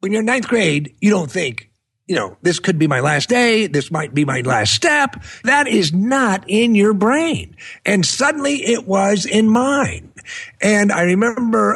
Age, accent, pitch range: 50-69, American, 170-215 Hz